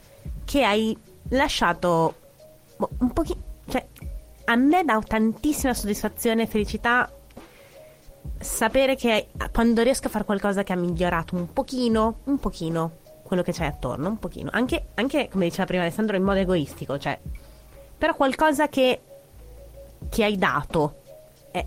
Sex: female